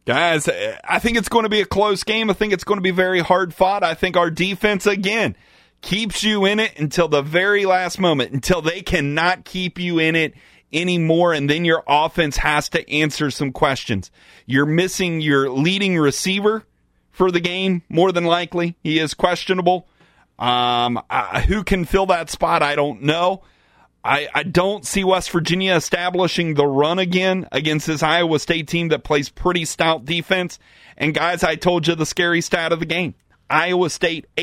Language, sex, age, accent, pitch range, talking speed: English, male, 30-49, American, 150-180 Hz, 185 wpm